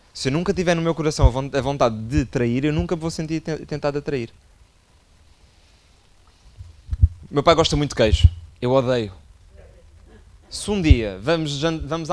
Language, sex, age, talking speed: Portuguese, male, 20-39, 160 wpm